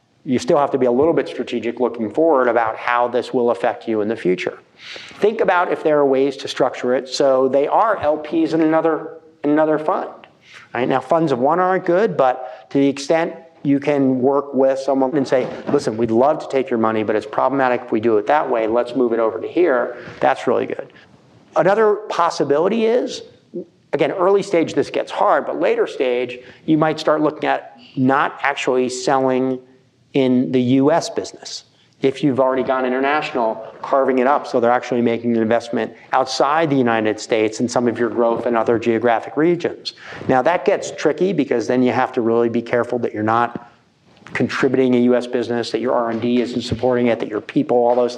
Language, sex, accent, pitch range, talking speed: English, male, American, 120-145 Hz, 200 wpm